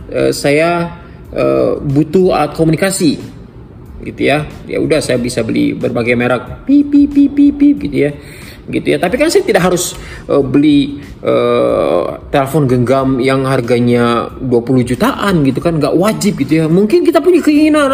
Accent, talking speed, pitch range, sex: native, 155 wpm, 120-180 Hz, male